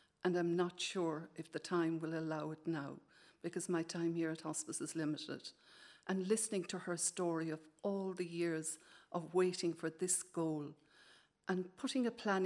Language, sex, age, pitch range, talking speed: English, female, 50-69, 165-180 Hz, 180 wpm